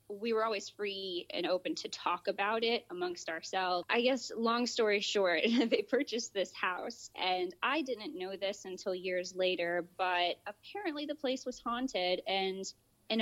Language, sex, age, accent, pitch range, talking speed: English, female, 20-39, American, 175-210 Hz, 170 wpm